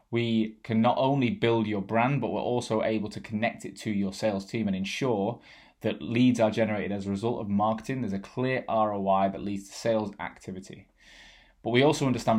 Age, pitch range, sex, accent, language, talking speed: 20-39, 100-120 Hz, male, British, English, 205 wpm